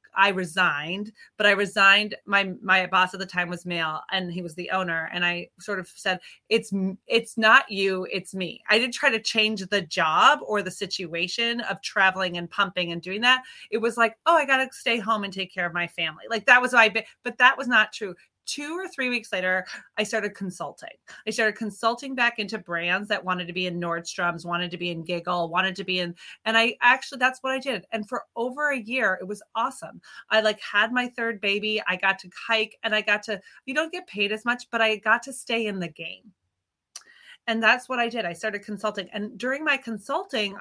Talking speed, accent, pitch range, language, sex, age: 230 wpm, American, 185-230 Hz, English, female, 30-49